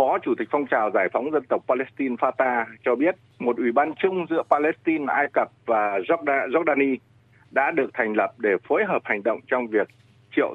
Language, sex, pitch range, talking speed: Vietnamese, male, 120-185 Hz, 200 wpm